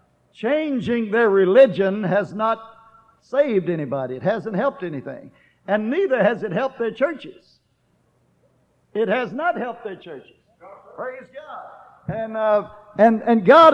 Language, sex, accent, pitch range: English, male, American, 220-275 Hz